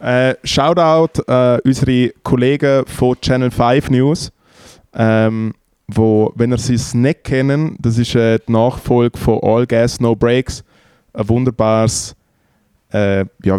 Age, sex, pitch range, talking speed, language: 20-39, male, 110-130 Hz, 125 wpm, German